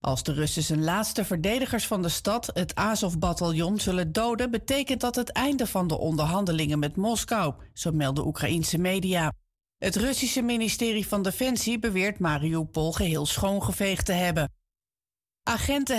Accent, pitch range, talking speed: Dutch, 160-225 Hz, 145 wpm